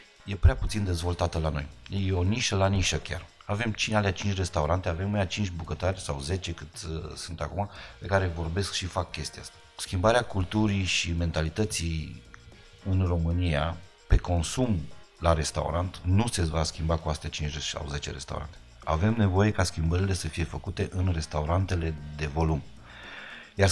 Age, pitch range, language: 30-49, 80-100 Hz, Romanian